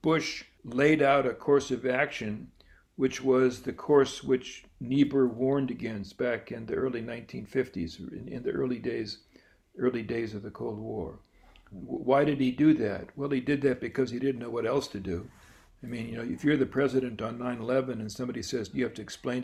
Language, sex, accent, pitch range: English, male, American, 120-140 Hz